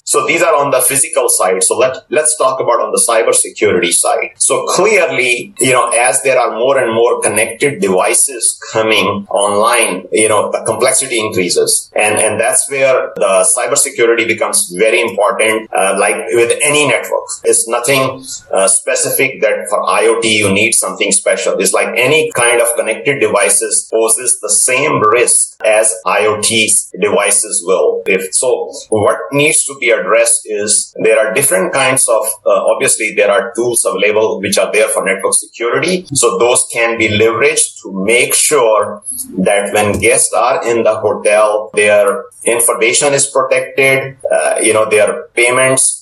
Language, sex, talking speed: English, male, 165 wpm